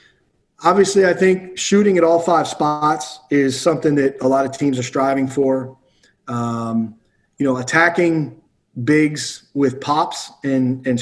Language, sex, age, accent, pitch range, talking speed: English, male, 30-49, American, 135-170 Hz, 145 wpm